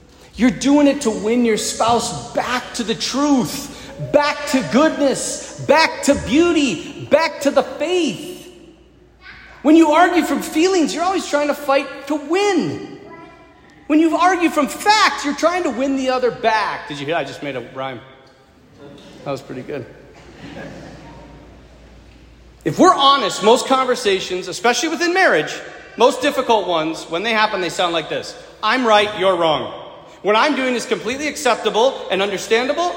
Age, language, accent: 40-59, English, American